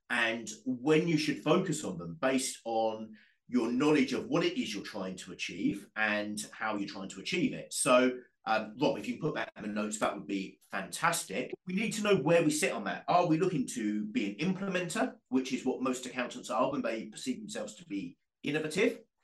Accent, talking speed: British, 220 wpm